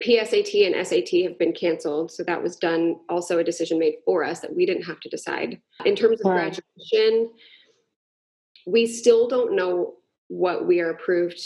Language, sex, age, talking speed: English, female, 20-39, 180 wpm